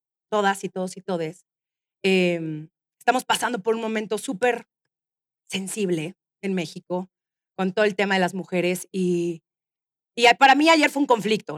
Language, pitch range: Spanish, 190-265 Hz